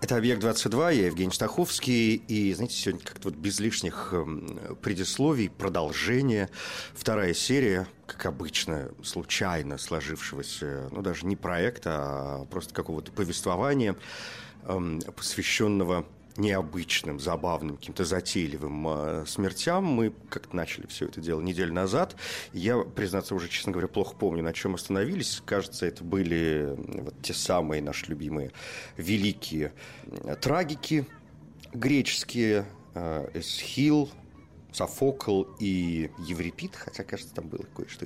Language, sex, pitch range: Russian, male, 80-115 Hz